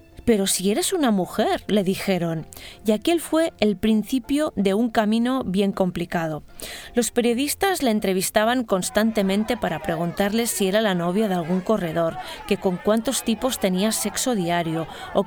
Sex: female